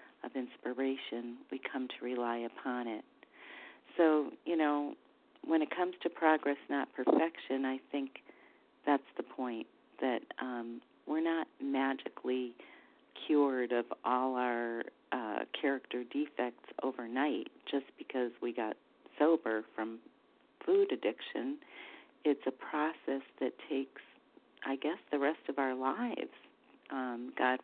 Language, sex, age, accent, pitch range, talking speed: English, female, 40-59, American, 130-155 Hz, 125 wpm